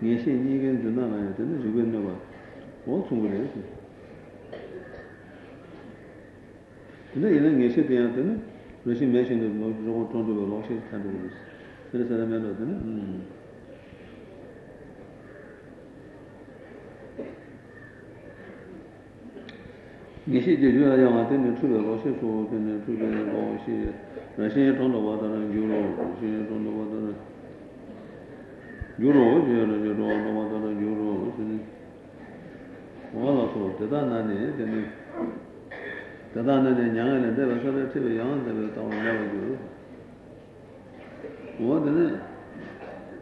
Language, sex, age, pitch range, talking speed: Italian, male, 60-79, 105-125 Hz, 30 wpm